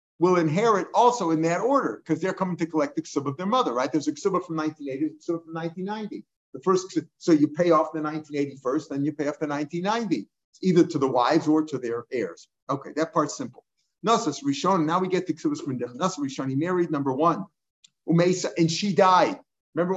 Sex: male